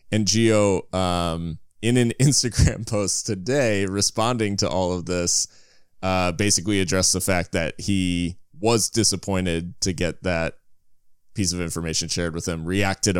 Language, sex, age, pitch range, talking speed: English, male, 20-39, 85-110 Hz, 145 wpm